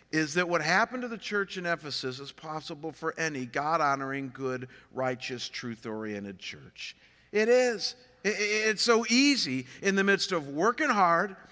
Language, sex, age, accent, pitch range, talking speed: English, male, 50-69, American, 165-220 Hz, 150 wpm